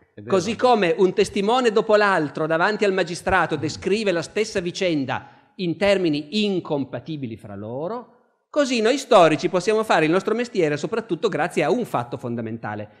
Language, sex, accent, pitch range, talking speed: Italian, male, native, 160-220 Hz, 150 wpm